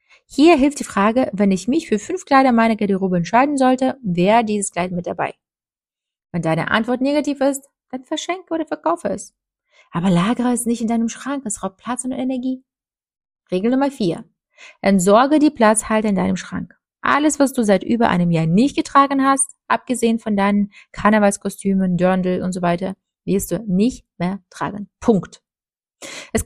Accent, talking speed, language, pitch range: German, 170 wpm, German, 190-260 Hz